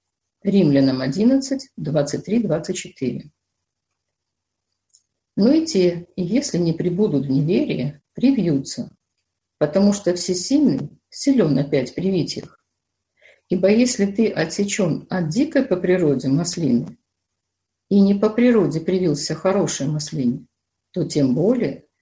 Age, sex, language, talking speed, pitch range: 50-69, female, Russian, 110 wpm, 135-210 Hz